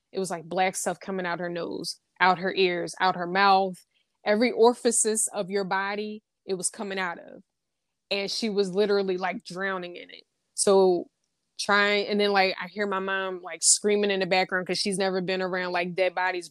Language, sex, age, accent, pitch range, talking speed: English, female, 20-39, American, 185-205 Hz, 200 wpm